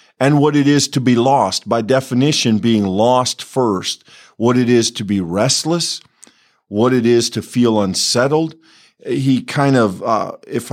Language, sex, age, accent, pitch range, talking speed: English, male, 50-69, American, 110-135 Hz, 160 wpm